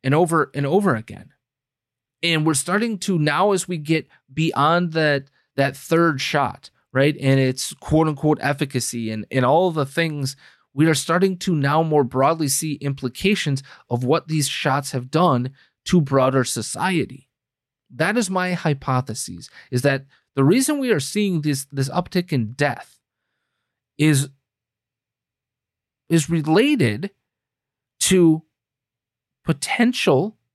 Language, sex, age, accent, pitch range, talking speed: English, male, 30-49, American, 125-170 Hz, 135 wpm